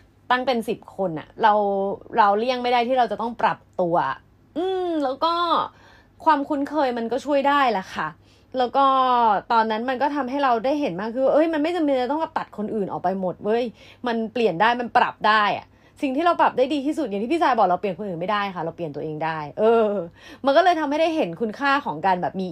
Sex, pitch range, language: female, 195-280 Hz, Thai